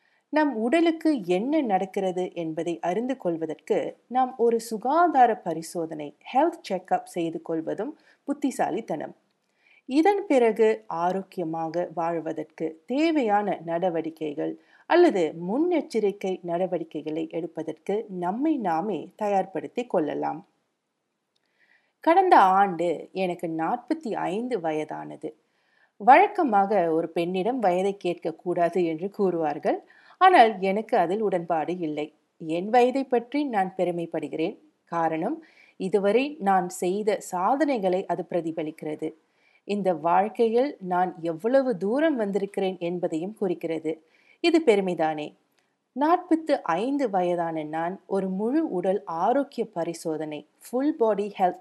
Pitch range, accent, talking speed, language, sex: 170-250 Hz, native, 95 wpm, Tamil, female